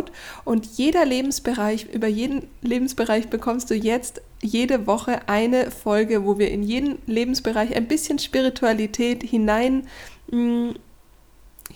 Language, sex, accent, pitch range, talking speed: German, female, German, 210-250 Hz, 115 wpm